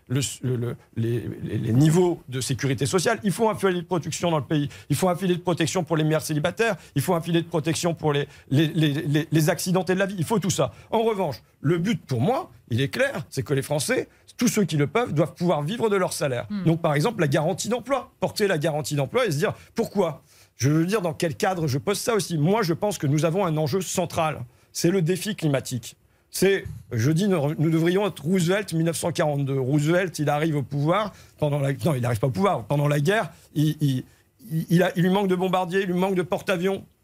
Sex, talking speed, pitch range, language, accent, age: male, 240 wpm, 145-195 Hz, French, French, 40-59